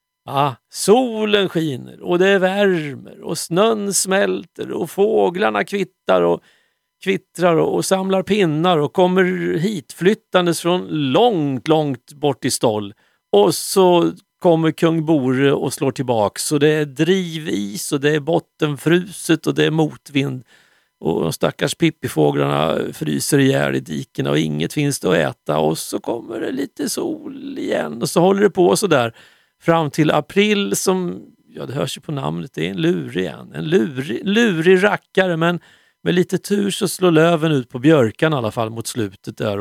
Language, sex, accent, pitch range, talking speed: Swedish, male, native, 140-185 Hz, 170 wpm